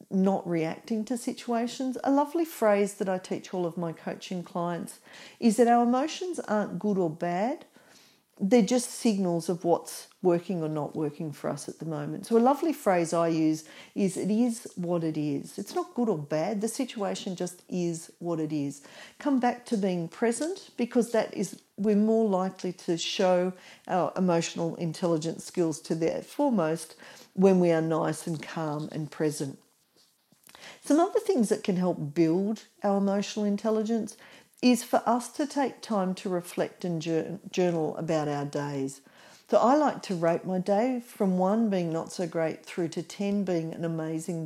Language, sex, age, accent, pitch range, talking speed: English, female, 50-69, Australian, 170-230 Hz, 175 wpm